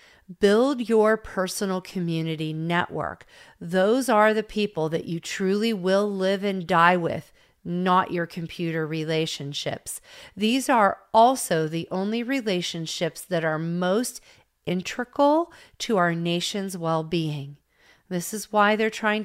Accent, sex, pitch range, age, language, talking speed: American, female, 165-215 Hz, 40-59, English, 125 wpm